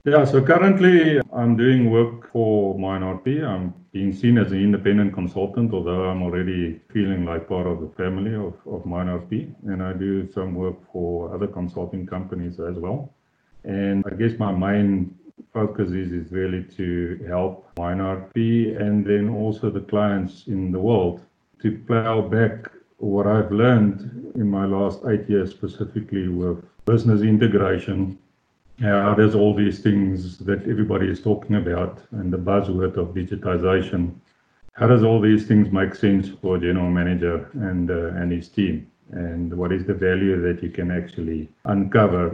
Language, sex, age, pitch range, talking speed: English, male, 50-69, 90-105 Hz, 160 wpm